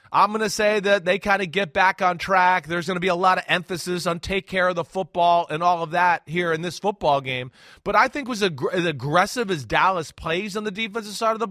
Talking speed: 255 wpm